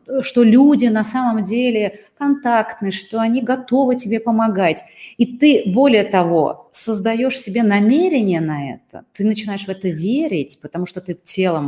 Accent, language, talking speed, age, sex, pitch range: native, Russian, 150 wpm, 30-49, female, 165-225 Hz